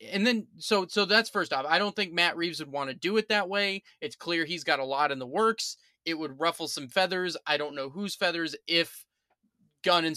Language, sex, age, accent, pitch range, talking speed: English, male, 20-39, American, 150-205 Hz, 240 wpm